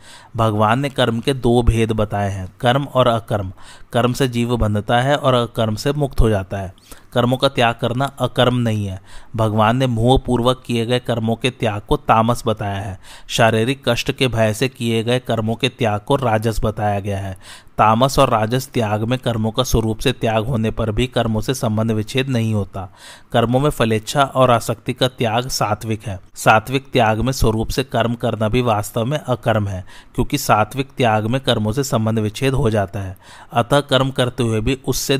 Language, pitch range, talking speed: Hindi, 110-130 Hz, 190 wpm